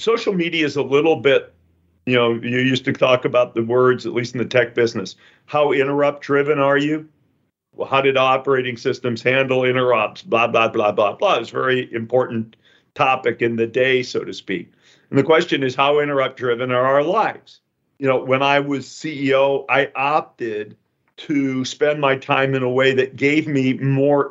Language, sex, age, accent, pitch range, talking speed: English, male, 50-69, American, 120-140 Hz, 195 wpm